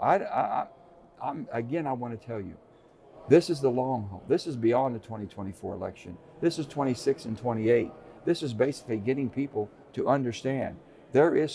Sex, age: male, 60-79